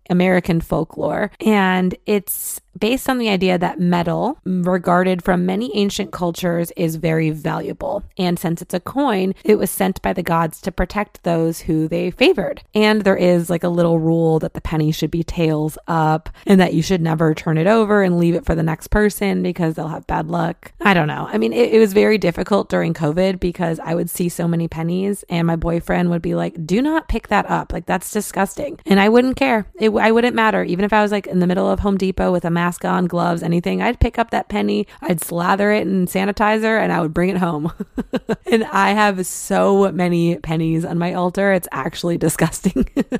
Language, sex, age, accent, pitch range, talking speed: English, female, 20-39, American, 170-205 Hz, 215 wpm